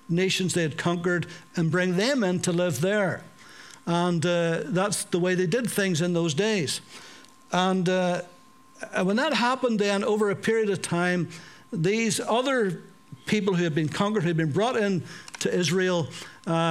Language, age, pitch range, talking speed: English, 60-79, 170-205 Hz, 170 wpm